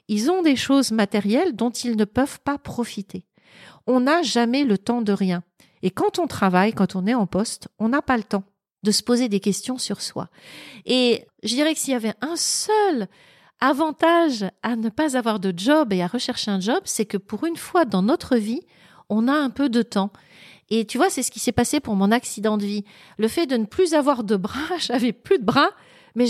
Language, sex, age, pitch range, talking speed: French, female, 40-59, 195-255 Hz, 230 wpm